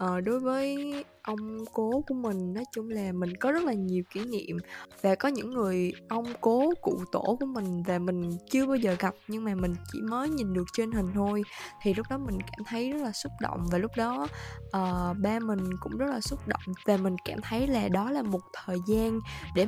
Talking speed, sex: 225 wpm, female